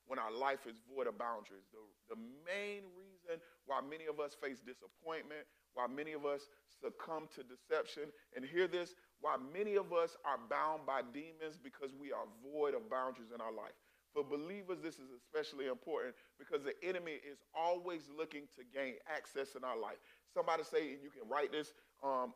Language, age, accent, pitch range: English, 40-59, American, 135-180 Hz